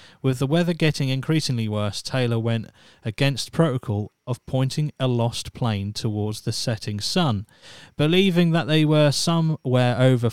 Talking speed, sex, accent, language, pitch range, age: 145 wpm, male, British, English, 115-140 Hz, 30-49